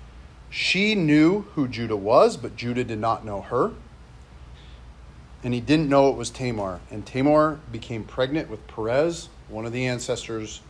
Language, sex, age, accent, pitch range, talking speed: English, male, 40-59, American, 95-150 Hz, 155 wpm